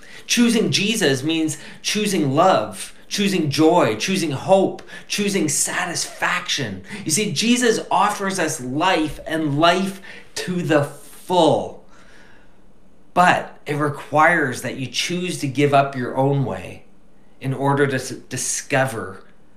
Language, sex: English, male